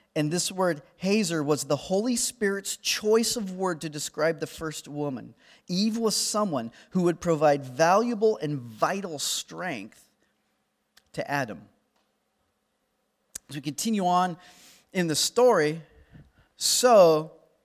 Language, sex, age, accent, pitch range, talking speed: English, male, 40-59, American, 150-215 Hz, 120 wpm